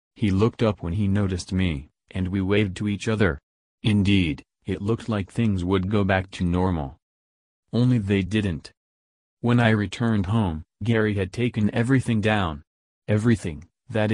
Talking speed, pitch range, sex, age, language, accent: 155 wpm, 90-110 Hz, male, 30-49, English, American